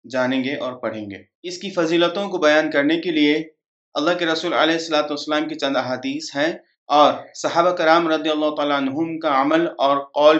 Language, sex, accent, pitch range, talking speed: English, male, Indian, 155-200 Hz, 190 wpm